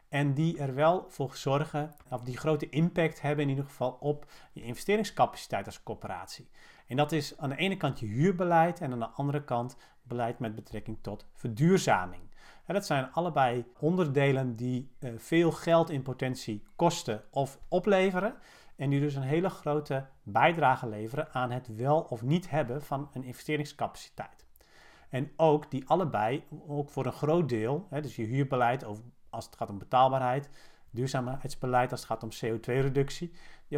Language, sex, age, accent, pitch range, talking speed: Dutch, male, 40-59, Dutch, 125-160 Hz, 170 wpm